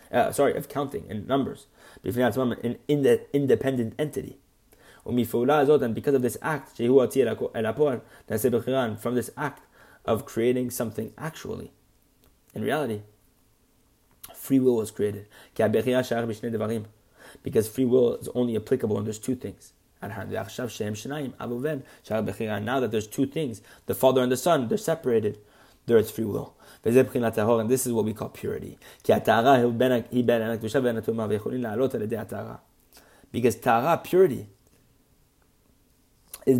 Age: 20-39